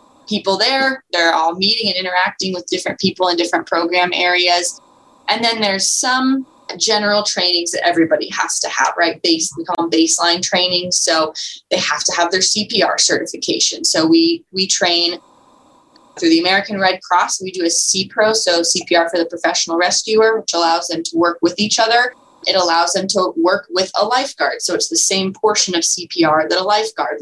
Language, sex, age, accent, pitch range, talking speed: English, female, 20-39, American, 170-230 Hz, 185 wpm